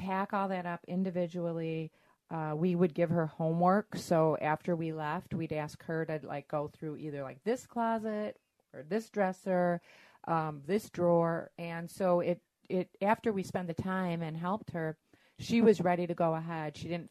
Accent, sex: American, female